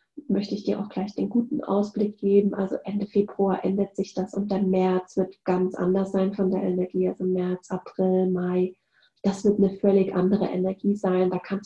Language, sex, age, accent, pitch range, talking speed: German, female, 30-49, German, 190-210 Hz, 195 wpm